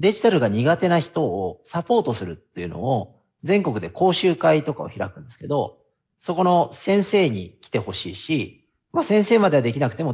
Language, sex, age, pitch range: Japanese, male, 40-59, 120-185 Hz